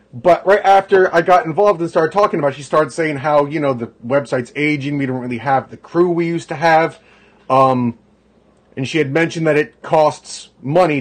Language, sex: English, male